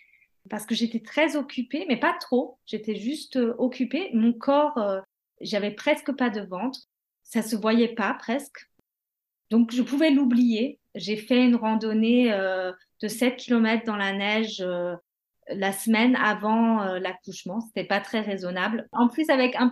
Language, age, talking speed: French, 30-49, 160 wpm